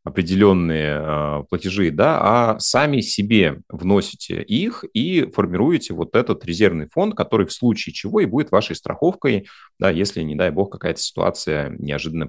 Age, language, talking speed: 30-49, Russian, 150 wpm